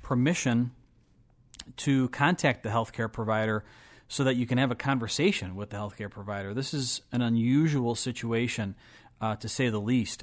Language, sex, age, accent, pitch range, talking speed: English, male, 40-59, American, 110-130 Hz, 160 wpm